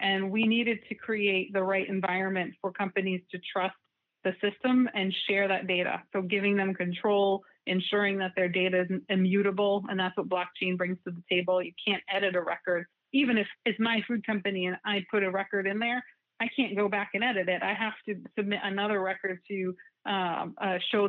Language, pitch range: English, 185-210 Hz